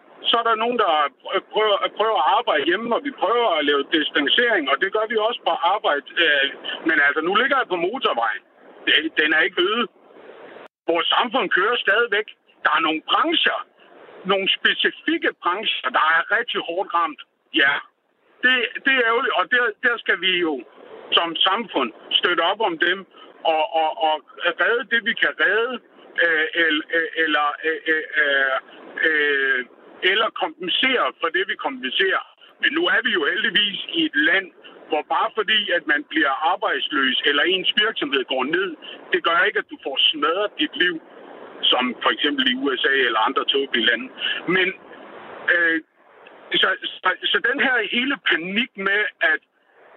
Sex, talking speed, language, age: male, 155 wpm, Danish, 60-79